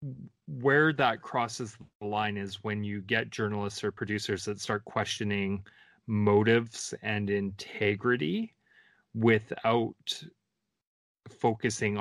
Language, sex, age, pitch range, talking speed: English, male, 30-49, 100-115 Hz, 100 wpm